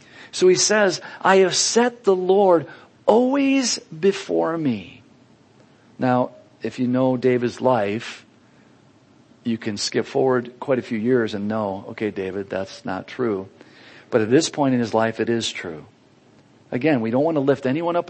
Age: 50-69